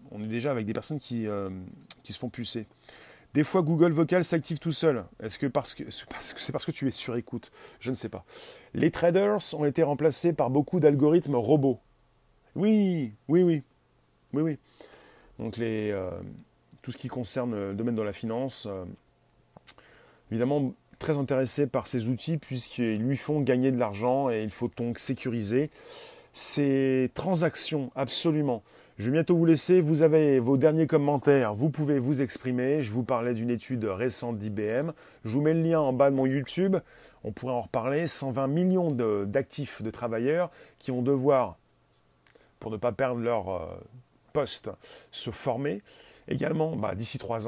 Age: 30-49